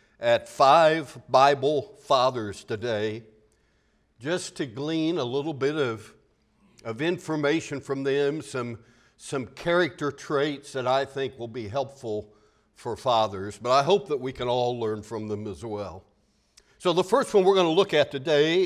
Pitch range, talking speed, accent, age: 120-175 Hz, 160 wpm, American, 60-79